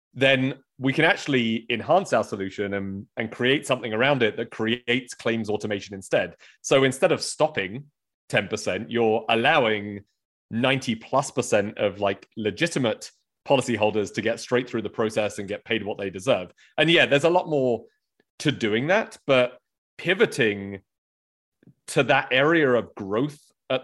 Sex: male